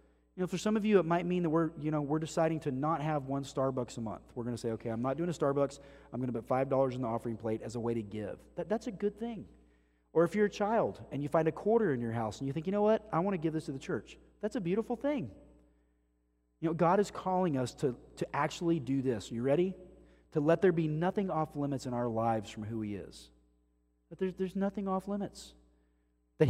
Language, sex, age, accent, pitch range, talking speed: English, male, 40-59, American, 115-165 Hz, 255 wpm